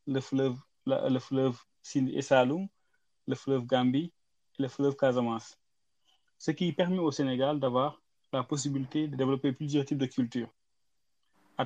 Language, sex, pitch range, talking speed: French, male, 130-150 Hz, 145 wpm